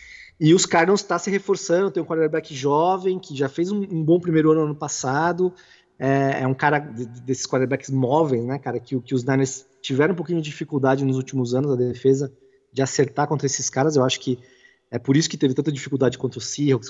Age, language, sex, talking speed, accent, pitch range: 20-39, Portuguese, male, 230 wpm, Brazilian, 135-190 Hz